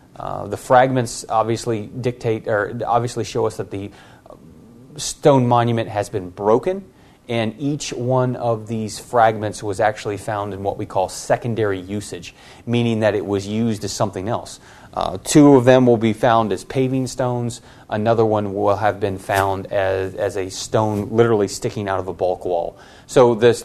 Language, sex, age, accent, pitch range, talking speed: English, male, 30-49, American, 105-130 Hz, 175 wpm